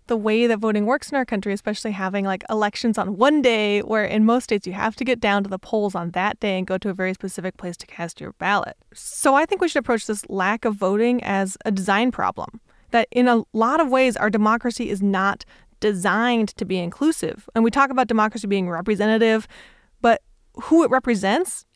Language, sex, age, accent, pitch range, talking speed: English, female, 30-49, American, 200-245 Hz, 220 wpm